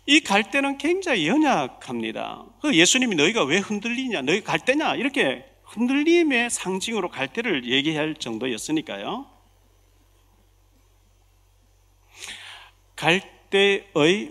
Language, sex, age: Korean, male, 40-59